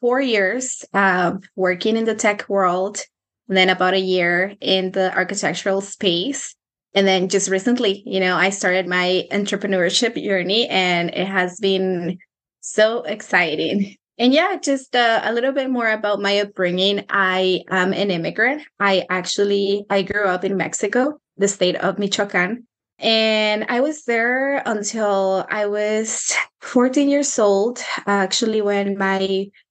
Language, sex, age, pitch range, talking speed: English, female, 20-39, 190-225 Hz, 145 wpm